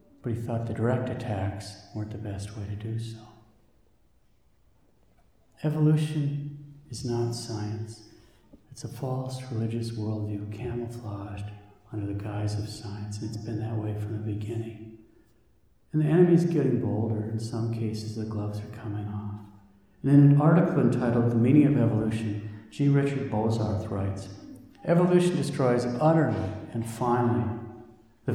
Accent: American